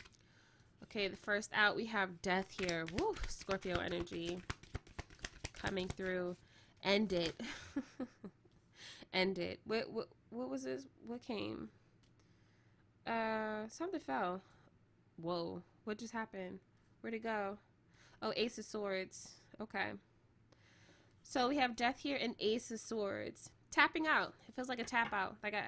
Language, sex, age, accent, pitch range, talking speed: English, female, 20-39, American, 195-245 Hz, 130 wpm